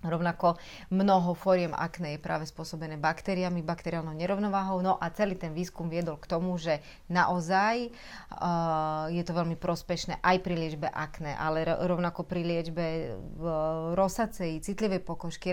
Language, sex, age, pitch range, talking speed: Slovak, female, 30-49, 165-190 Hz, 145 wpm